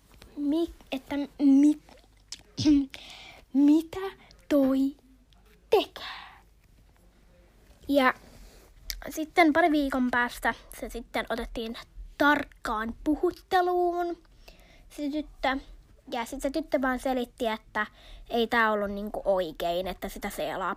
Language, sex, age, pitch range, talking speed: Finnish, female, 20-39, 225-290 Hz, 95 wpm